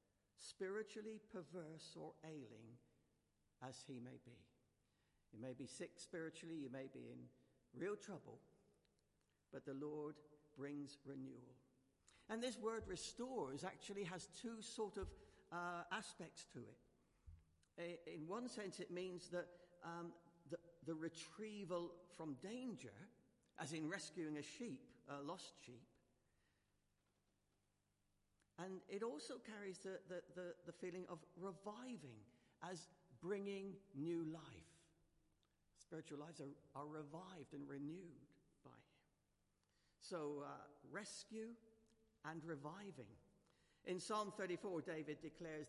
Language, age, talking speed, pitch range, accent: English, 60-79, 115 wpm, 130-185 Hz, British